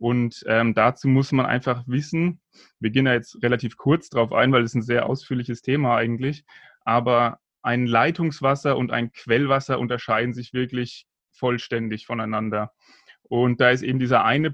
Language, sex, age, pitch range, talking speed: German, male, 30-49, 120-140 Hz, 165 wpm